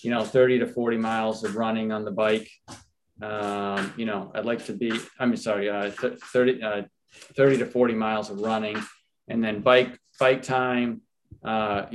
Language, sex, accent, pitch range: English, male, American, 100-115 Hz